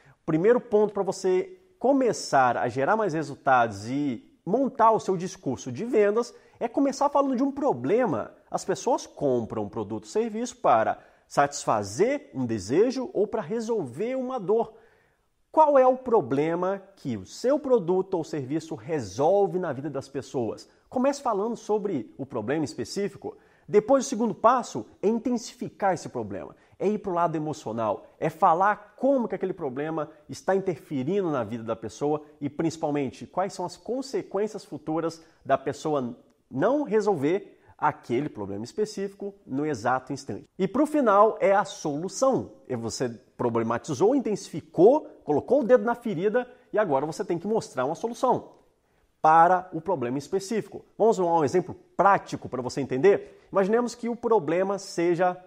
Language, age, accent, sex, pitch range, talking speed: Portuguese, 30-49, Brazilian, male, 150-230 Hz, 155 wpm